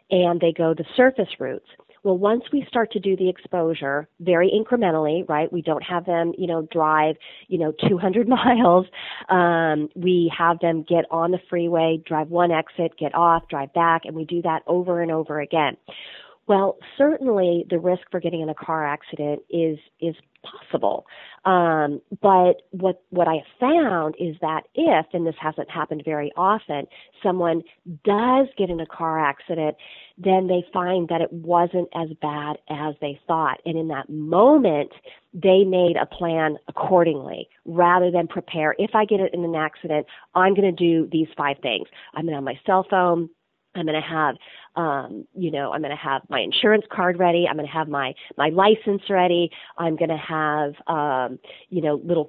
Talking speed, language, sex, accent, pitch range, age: 185 wpm, English, female, American, 160-190 Hz, 40-59